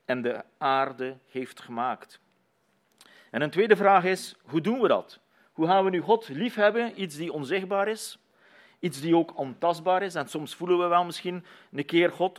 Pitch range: 140-185 Hz